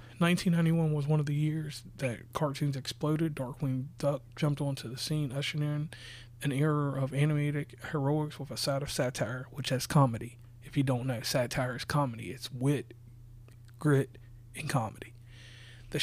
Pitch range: 125-165 Hz